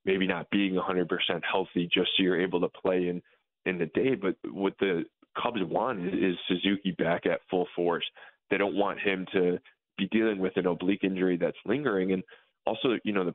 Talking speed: 200 wpm